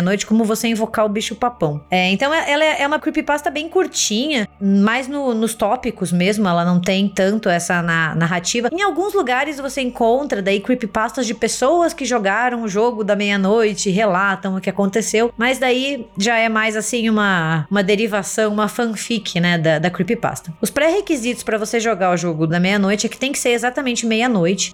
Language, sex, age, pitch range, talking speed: Portuguese, female, 20-39, 195-255 Hz, 185 wpm